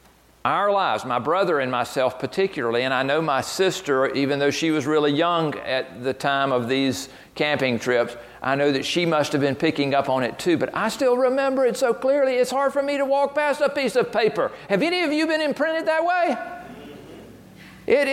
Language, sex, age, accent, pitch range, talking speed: English, male, 50-69, American, 130-210 Hz, 210 wpm